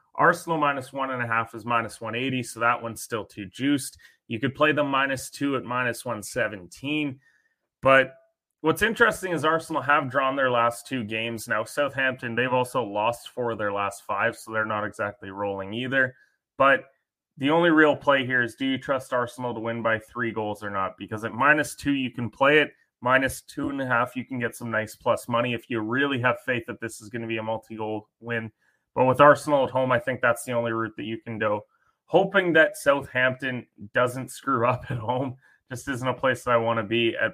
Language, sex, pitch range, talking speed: English, male, 115-135 Hz, 210 wpm